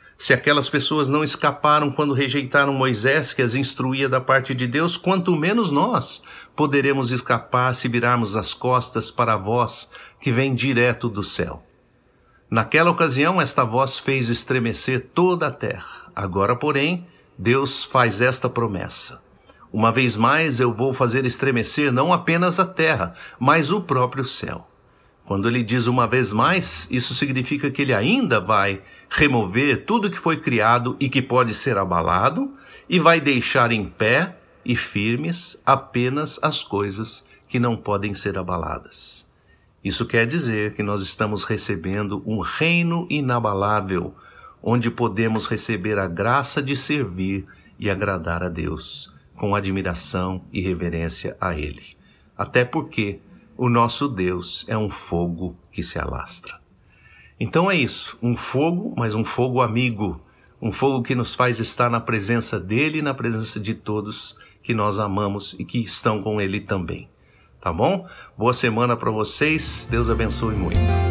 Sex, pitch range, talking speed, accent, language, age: male, 105-135 Hz, 150 wpm, Brazilian, Portuguese, 60-79